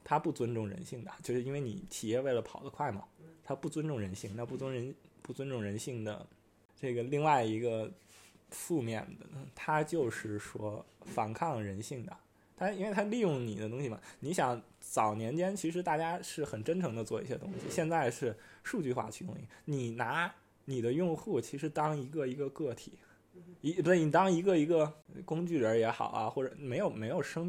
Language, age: Chinese, 20-39